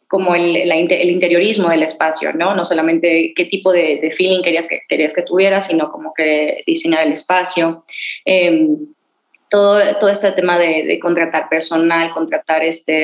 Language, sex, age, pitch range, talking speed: Spanish, female, 20-39, 170-215 Hz, 170 wpm